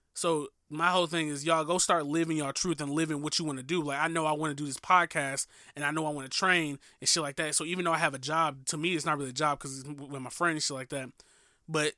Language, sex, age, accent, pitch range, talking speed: English, male, 20-39, American, 145-170 Hz, 310 wpm